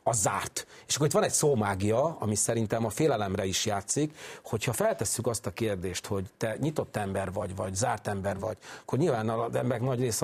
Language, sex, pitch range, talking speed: Hungarian, male, 105-125 Hz, 200 wpm